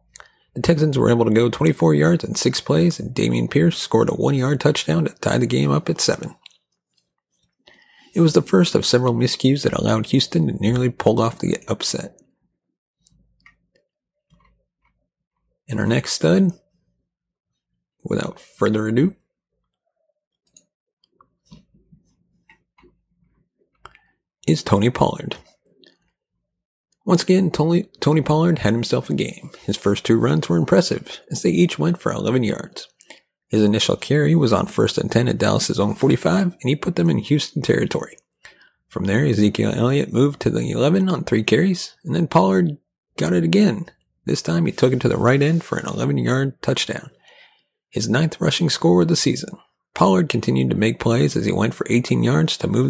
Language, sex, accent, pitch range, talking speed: English, male, American, 115-170 Hz, 160 wpm